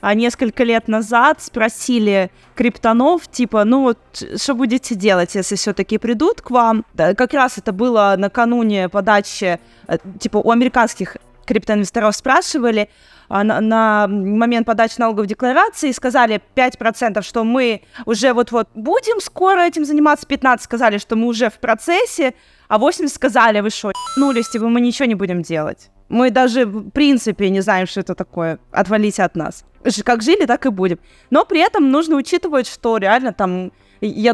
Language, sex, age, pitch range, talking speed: Russian, female, 20-39, 210-255 Hz, 155 wpm